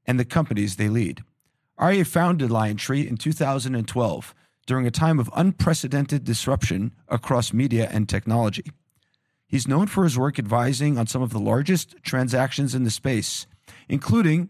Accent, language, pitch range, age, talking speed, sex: American, English, 115-150 Hz, 40-59, 150 wpm, male